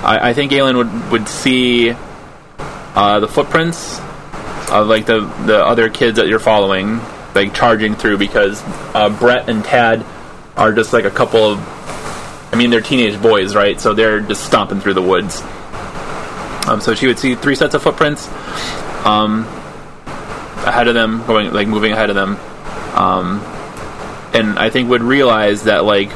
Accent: American